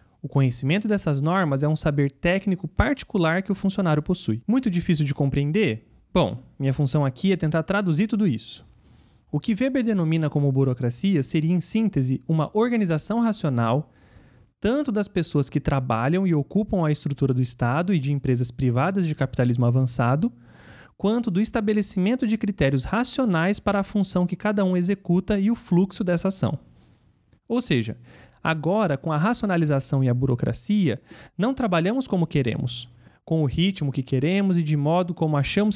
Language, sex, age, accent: English, male, 30-49, Brazilian